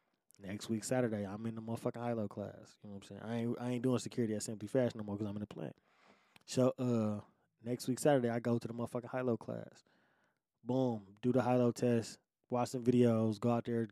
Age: 20-39